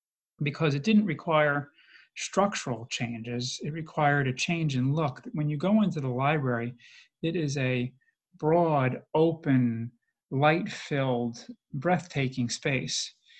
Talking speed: 115 wpm